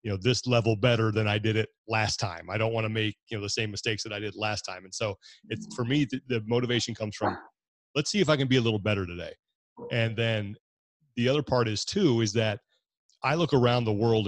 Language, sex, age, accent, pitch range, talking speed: English, male, 30-49, American, 105-125 Hz, 250 wpm